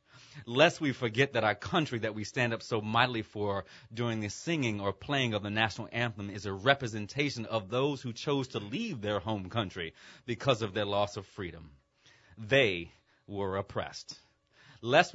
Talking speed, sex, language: 175 wpm, male, English